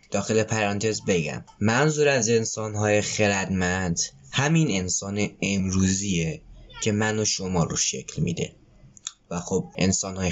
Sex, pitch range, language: male, 100-150 Hz, Persian